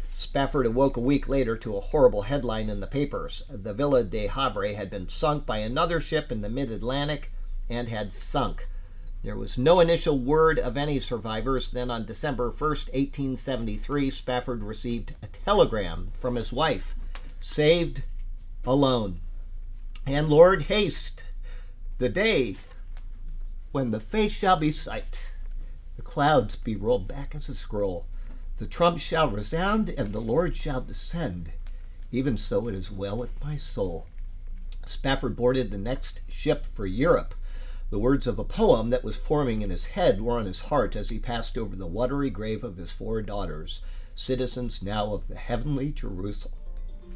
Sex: male